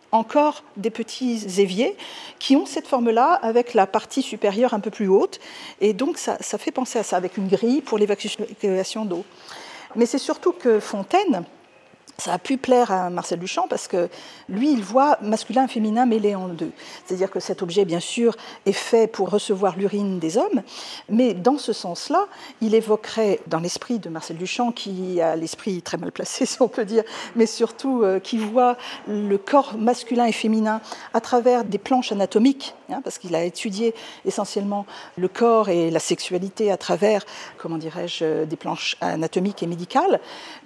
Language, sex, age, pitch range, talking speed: French, female, 50-69, 190-245 Hz, 180 wpm